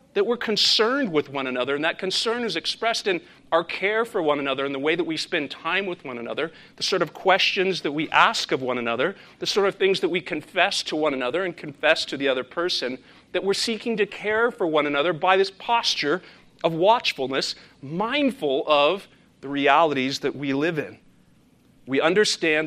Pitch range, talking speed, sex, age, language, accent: 140-190 Hz, 200 wpm, male, 40-59, English, American